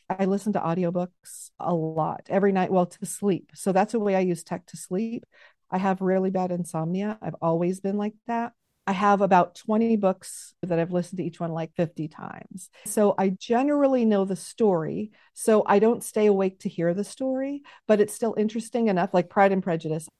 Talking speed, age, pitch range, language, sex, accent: 205 wpm, 40-59, 175-215 Hz, English, female, American